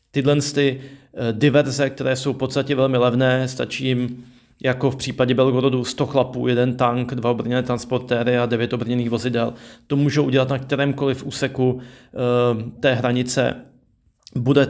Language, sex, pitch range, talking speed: Slovak, male, 120-135 Hz, 135 wpm